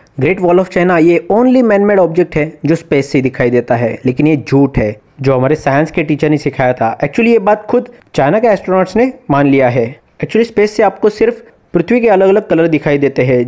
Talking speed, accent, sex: 230 wpm, native, male